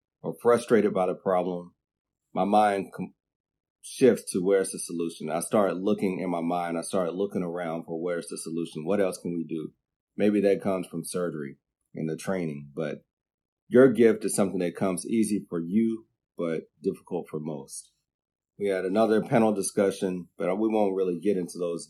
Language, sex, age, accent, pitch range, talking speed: English, male, 30-49, American, 85-105 Hz, 180 wpm